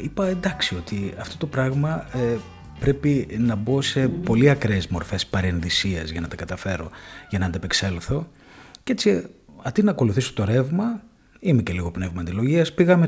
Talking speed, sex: 160 wpm, male